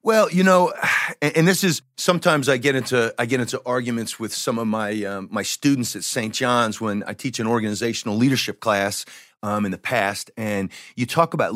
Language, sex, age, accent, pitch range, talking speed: English, male, 40-59, American, 115-165 Hz, 205 wpm